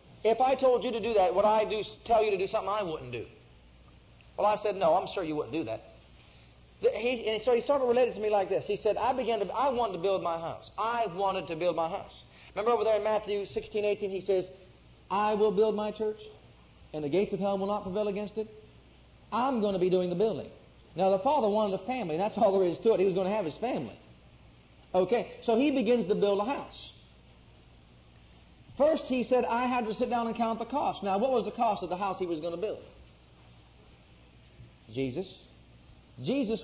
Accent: American